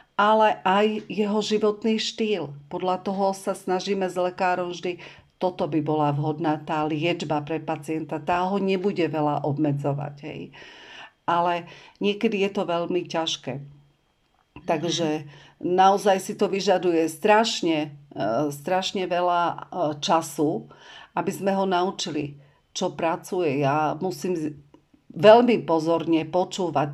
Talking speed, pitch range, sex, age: 115 wpm, 155-195 Hz, female, 50-69